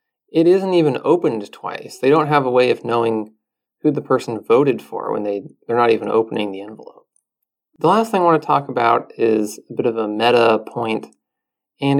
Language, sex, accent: English, male, American